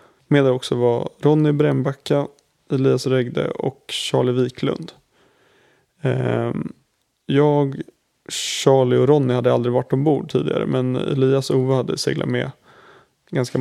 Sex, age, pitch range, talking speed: male, 20-39, 125-145 Hz, 120 wpm